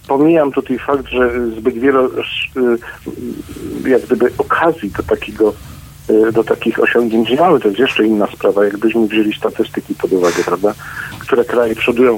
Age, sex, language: 50-69, male, Polish